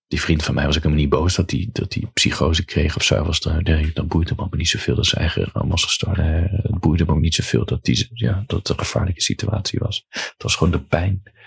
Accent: Dutch